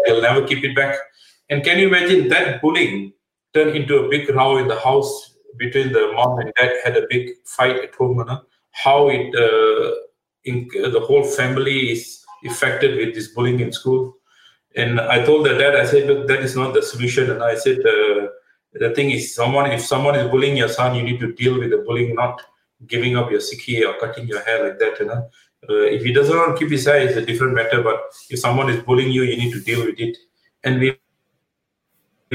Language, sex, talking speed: Punjabi, male, 225 wpm